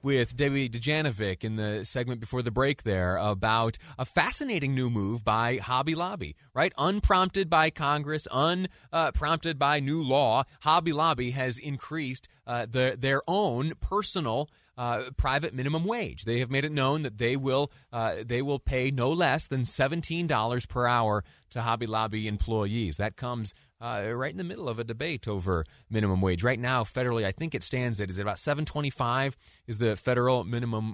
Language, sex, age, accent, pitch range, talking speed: English, male, 30-49, American, 110-140 Hz, 180 wpm